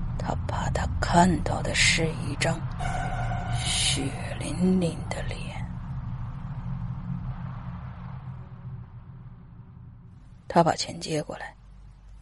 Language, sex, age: Chinese, female, 30-49